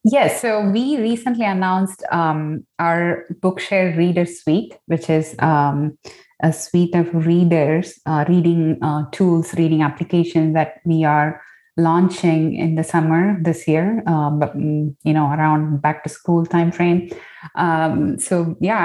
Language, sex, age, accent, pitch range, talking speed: English, female, 20-39, Indian, 155-175 Hz, 135 wpm